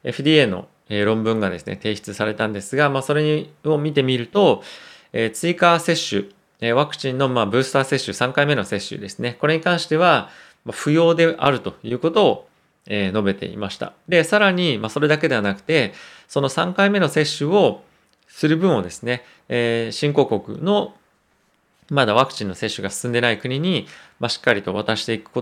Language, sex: Japanese, male